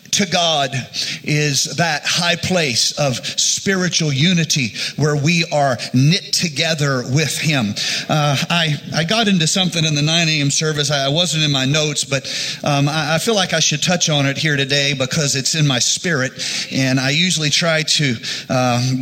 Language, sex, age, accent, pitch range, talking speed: English, male, 40-59, American, 130-160 Hz, 180 wpm